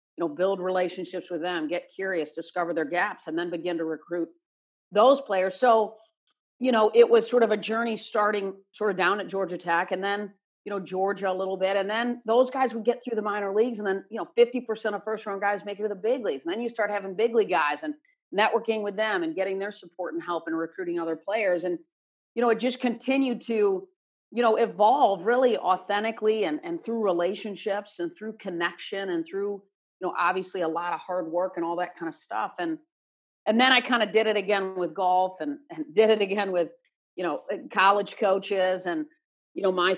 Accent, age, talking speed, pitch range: American, 40-59, 225 wpm, 175-220 Hz